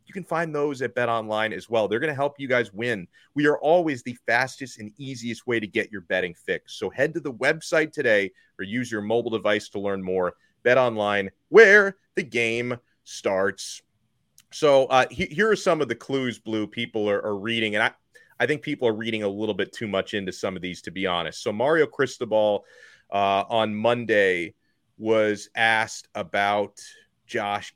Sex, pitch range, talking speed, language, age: male, 110-140 Hz, 200 wpm, English, 30-49